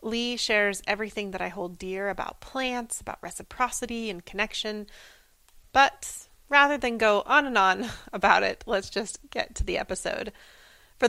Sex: female